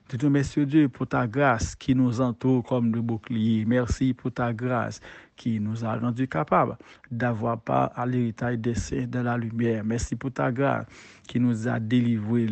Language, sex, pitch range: English, male, 115-130 Hz